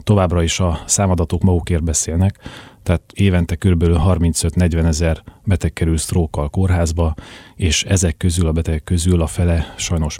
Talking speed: 140 wpm